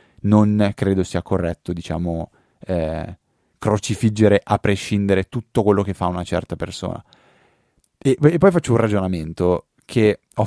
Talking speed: 140 wpm